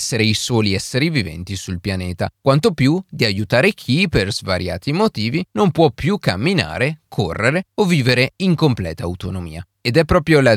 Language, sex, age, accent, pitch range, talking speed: Italian, male, 30-49, native, 100-160 Hz, 165 wpm